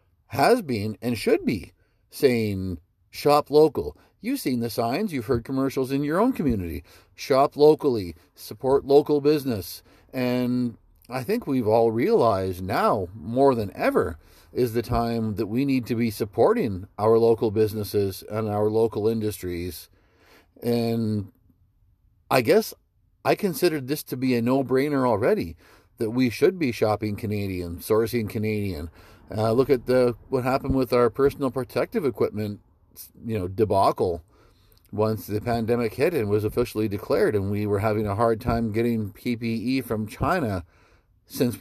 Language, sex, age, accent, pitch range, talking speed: English, male, 40-59, American, 100-120 Hz, 150 wpm